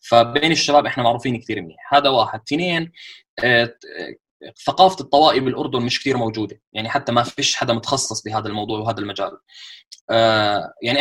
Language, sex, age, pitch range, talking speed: Arabic, male, 20-39, 115-145 Hz, 140 wpm